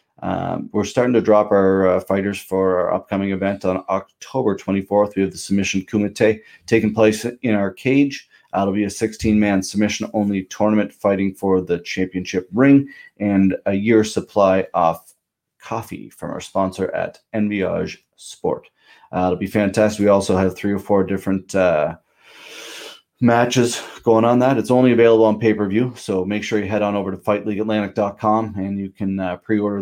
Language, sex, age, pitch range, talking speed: English, male, 30-49, 95-120 Hz, 165 wpm